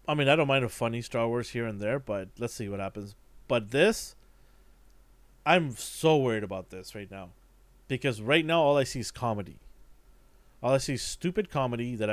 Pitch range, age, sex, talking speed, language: 105-155 Hz, 30-49, male, 205 wpm, English